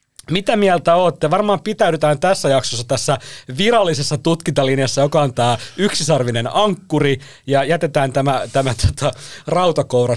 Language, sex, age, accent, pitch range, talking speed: Finnish, male, 30-49, native, 120-160 Hz, 125 wpm